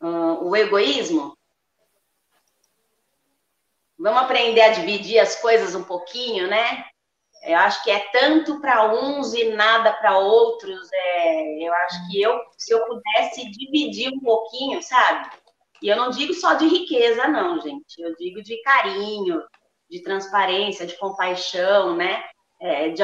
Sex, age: female, 30-49